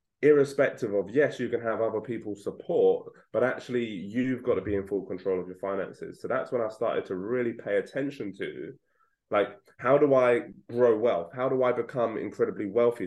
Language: English